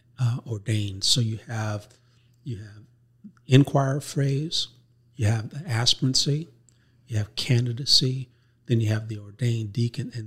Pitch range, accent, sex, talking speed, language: 115-130 Hz, American, male, 135 wpm, English